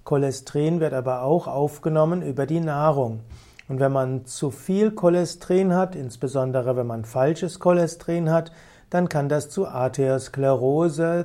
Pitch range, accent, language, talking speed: 130-170 Hz, German, German, 140 wpm